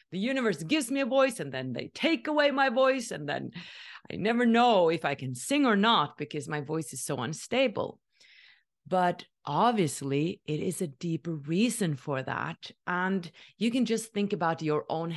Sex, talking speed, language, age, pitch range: female, 185 wpm, English, 30-49, 170-245 Hz